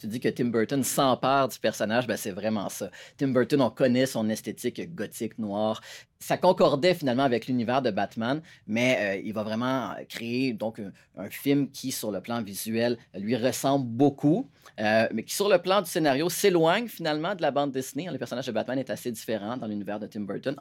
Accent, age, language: Canadian, 30-49, French